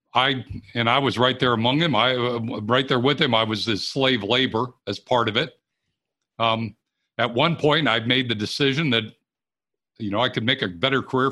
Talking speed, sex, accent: 205 wpm, male, American